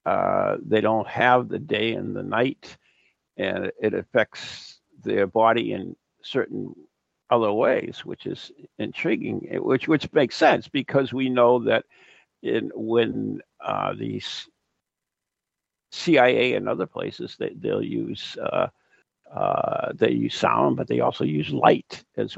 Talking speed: 140 wpm